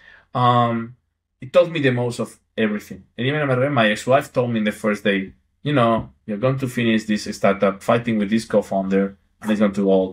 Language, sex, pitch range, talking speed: English, male, 100-125 Hz, 205 wpm